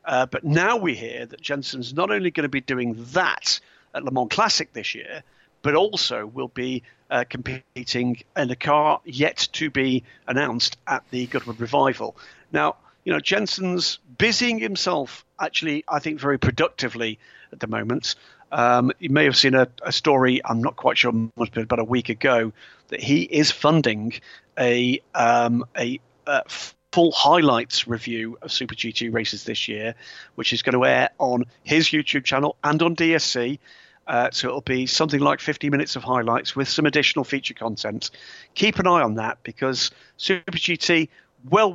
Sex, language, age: male, English, 40-59